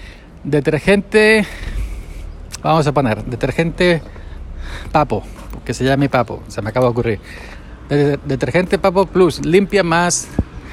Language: Spanish